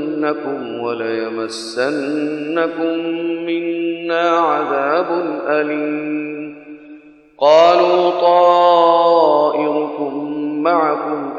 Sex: male